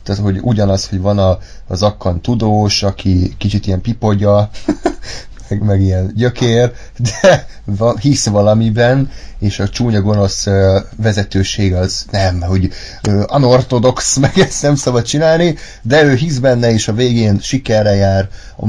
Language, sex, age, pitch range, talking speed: Hungarian, male, 30-49, 95-115 Hz, 150 wpm